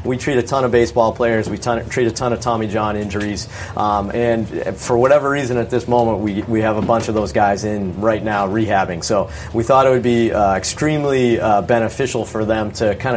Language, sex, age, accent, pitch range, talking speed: English, male, 30-49, American, 105-120 Hz, 230 wpm